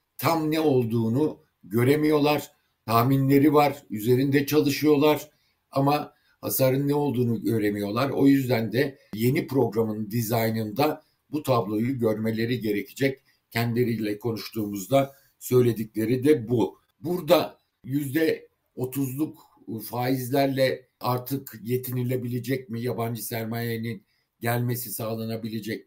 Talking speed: 90 wpm